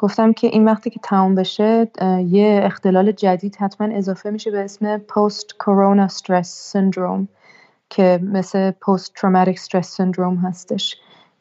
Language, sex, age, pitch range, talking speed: Persian, female, 30-49, 185-210 Hz, 135 wpm